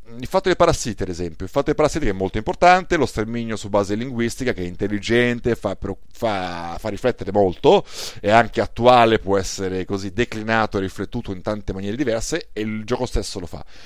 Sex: male